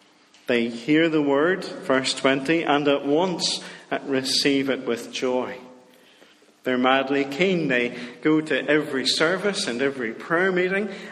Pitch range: 115-160 Hz